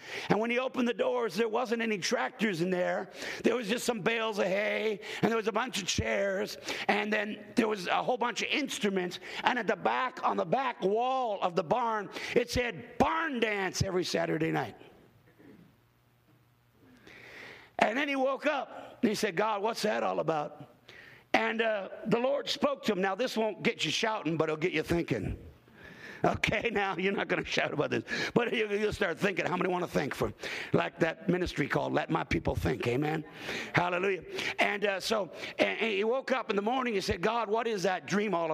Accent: American